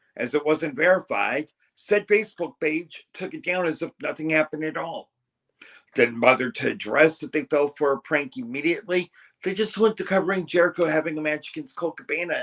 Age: 50-69